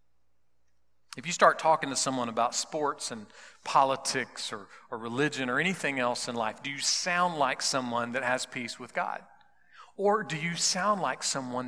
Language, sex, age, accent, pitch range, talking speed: English, male, 40-59, American, 120-170 Hz, 175 wpm